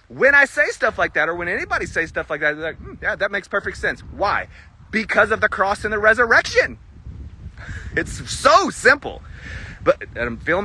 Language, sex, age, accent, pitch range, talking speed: English, male, 30-49, American, 155-230 Hz, 195 wpm